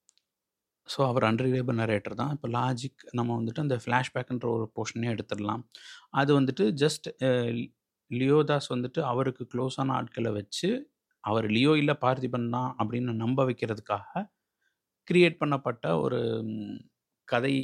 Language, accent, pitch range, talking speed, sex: Tamil, native, 115-150 Hz, 120 wpm, male